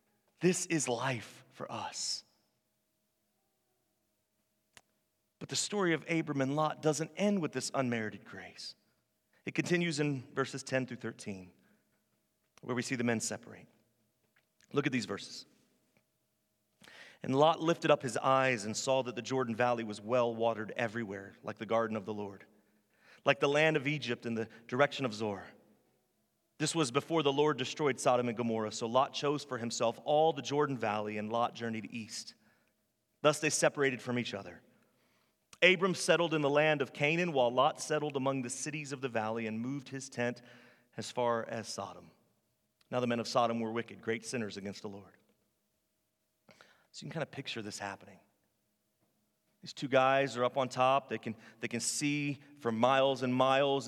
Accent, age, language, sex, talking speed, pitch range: American, 30-49, English, male, 170 wpm, 110-145 Hz